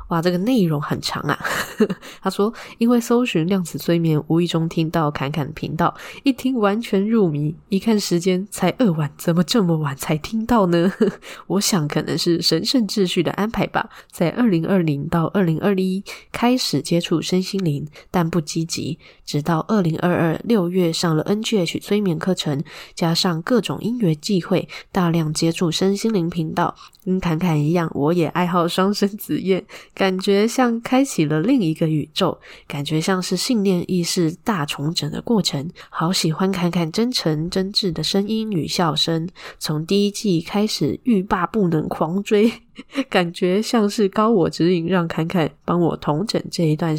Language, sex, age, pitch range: Chinese, female, 10-29, 160-200 Hz